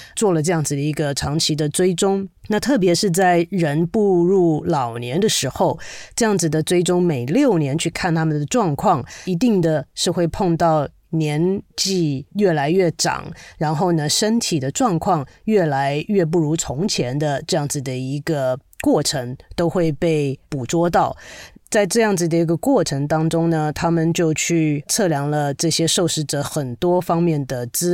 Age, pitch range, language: 30-49, 150-185 Hz, Chinese